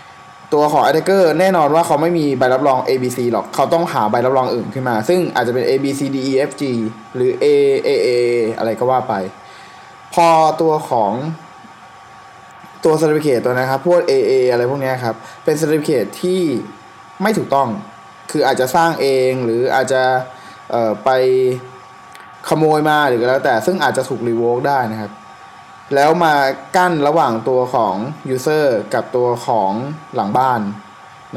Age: 20-39